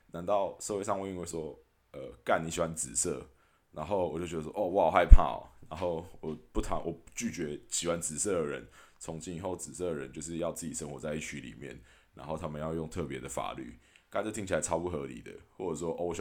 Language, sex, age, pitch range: Chinese, male, 20-39, 75-90 Hz